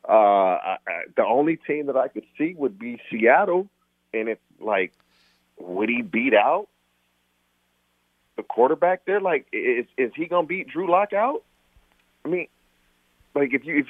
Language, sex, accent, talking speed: English, male, American, 165 wpm